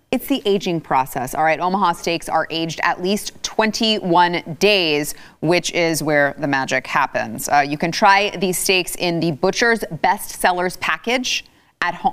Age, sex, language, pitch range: 30-49, female, English, 170-215 Hz